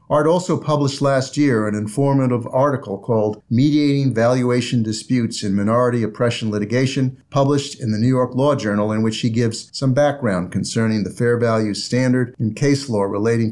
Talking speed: 170 wpm